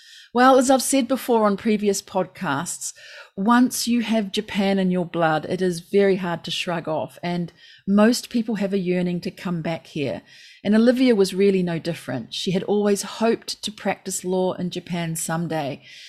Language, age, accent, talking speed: English, 40-59, Australian, 180 wpm